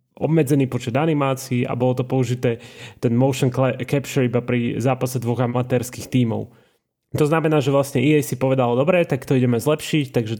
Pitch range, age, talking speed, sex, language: 120-135 Hz, 20-39, 165 wpm, male, Slovak